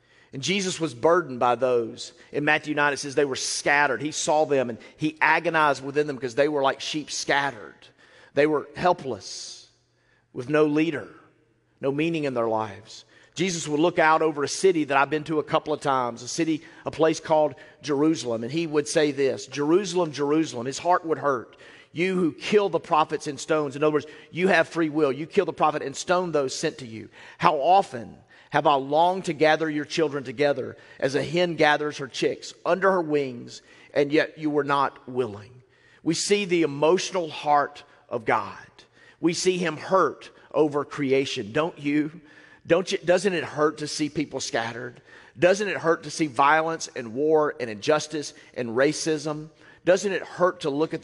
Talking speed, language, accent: 190 wpm, English, American